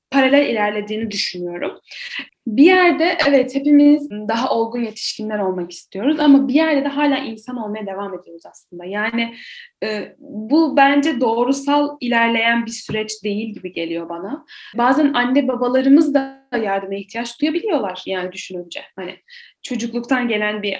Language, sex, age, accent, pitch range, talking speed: Turkish, female, 10-29, native, 210-285 Hz, 135 wpm